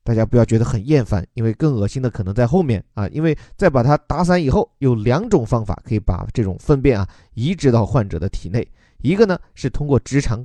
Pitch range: 105-140 Hz